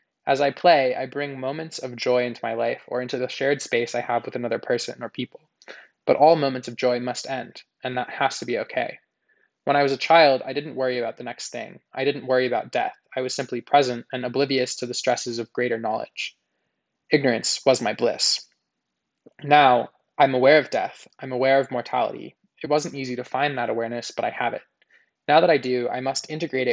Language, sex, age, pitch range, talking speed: English, male, 20-39, 125-145 Hz, 215 wpm